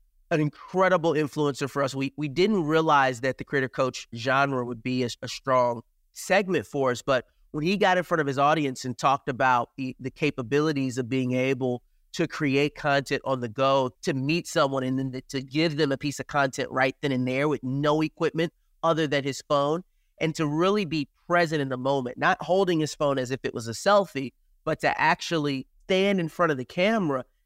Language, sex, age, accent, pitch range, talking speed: English, male, 30-49, American, 130-160 Hz, 210 wpm